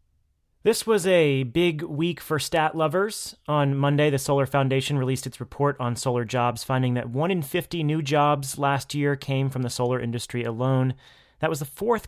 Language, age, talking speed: English, 30-49, 190 wpm